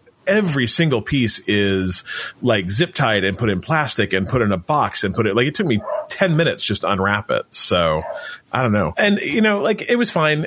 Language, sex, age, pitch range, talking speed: English, male, 30-49, 110-145 Hz, 230 wpm